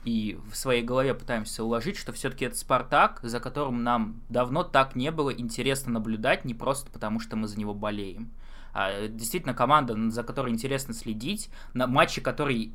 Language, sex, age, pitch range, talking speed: Russian, male, 20-39, 115-140 Hz, 170 wpm